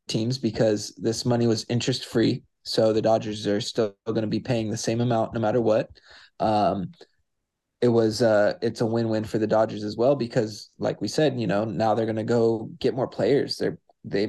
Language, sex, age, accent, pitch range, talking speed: English, male, 20-39, American, 110-125 Hz, 210 wpm